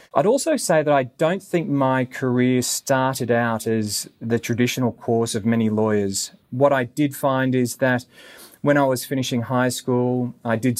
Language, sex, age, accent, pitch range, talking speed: English, male, 30-49, Australian, 115-130 Hz, 180 wpm